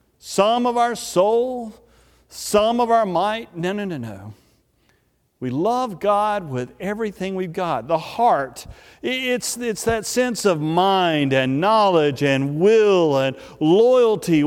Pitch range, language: 135-205 Hz, English